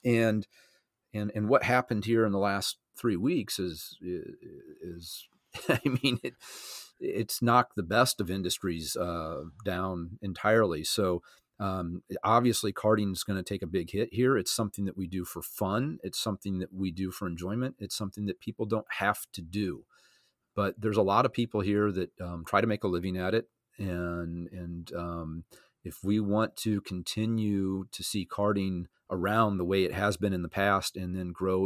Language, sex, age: English, male, 40-59